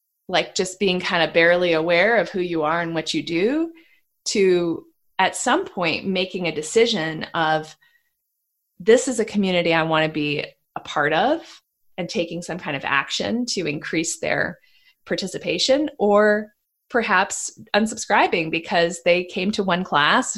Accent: American